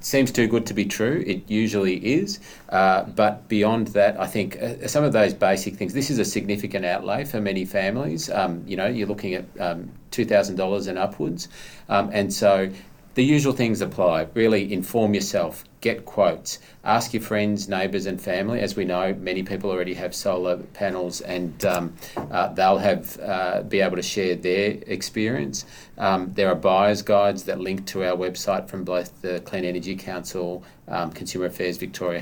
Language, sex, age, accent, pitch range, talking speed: English, male, 40-59, Australian, 90-105 Hz, 185 wpm